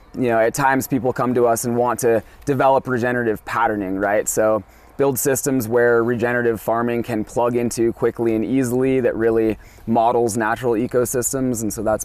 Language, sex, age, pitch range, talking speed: English, male, 20-39, 110-125 Hz, 175 wpm